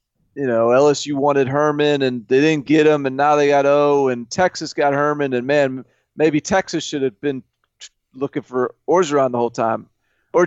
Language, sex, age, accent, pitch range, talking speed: English, male, 30-49, American, 125-155 Hz, 190 wpm